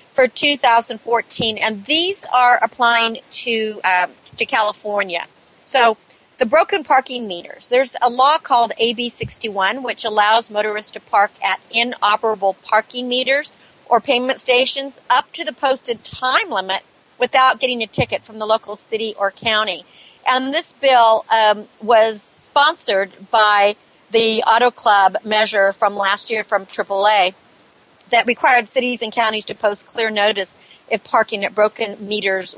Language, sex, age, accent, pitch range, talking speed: English, female, 50-69, American, 210-255 Hz, 145 wpm